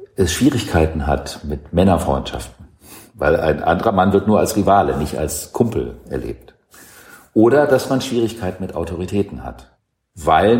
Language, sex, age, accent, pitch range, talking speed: German, male, 50-69, German, 80-115 Hz, 140 wpm